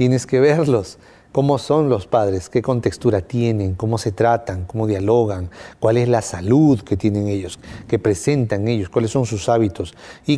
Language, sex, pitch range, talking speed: English, male, 110-135 Hz, 175 wpm